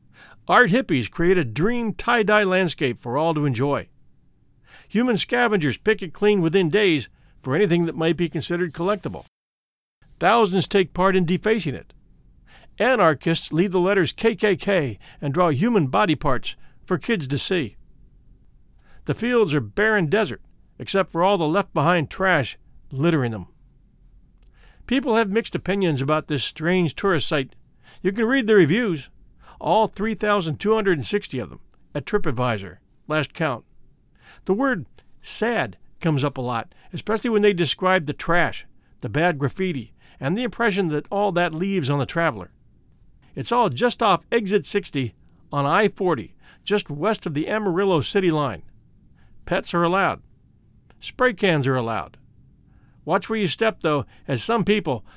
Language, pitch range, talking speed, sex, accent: English, 145-205 Hz, 150 wpm, male, American